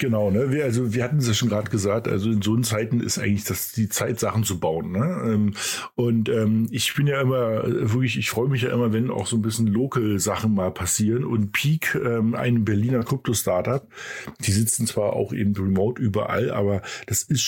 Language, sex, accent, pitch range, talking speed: German, male, German, 105-125 Hz, 210 wpm